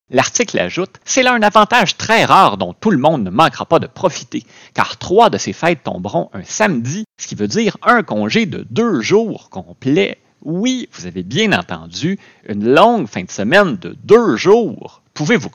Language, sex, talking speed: French, male, 195 wpm